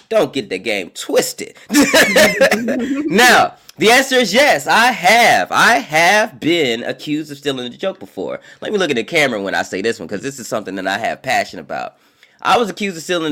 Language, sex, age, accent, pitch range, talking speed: English, male, 20-39, American, 115-190 Hz, 205 wpm